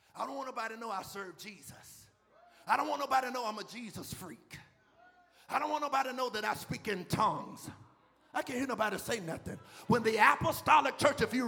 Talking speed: 220 wpm